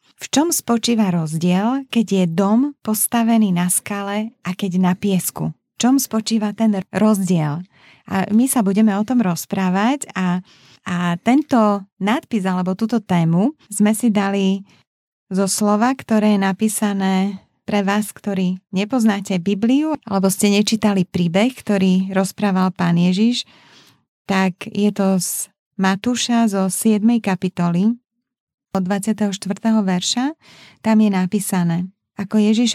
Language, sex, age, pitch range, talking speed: Slovak, female, 30-49, 190-225 Hz, 130 wpm